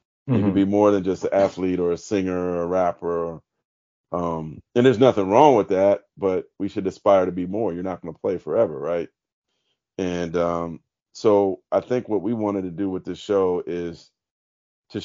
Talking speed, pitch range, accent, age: 200 wpm, 85-100 Hz, American, 40-59